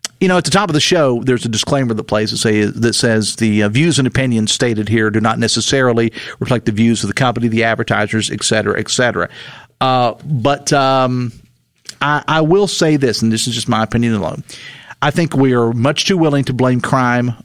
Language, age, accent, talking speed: English, 40-59, American, 215 wpm